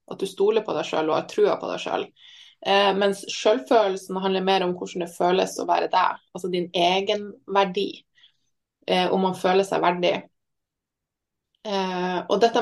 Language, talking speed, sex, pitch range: English, 190 wpm, female, 180-215 Hz